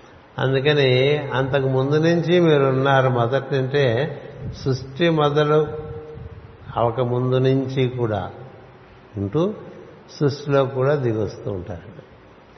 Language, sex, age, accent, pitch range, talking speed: Telugu, male, 60-79, native, 115-135 Hz, 90 wpm